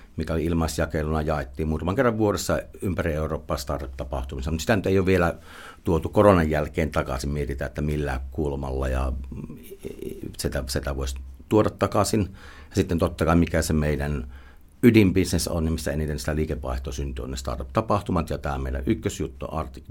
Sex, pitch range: male, 70-90 Hz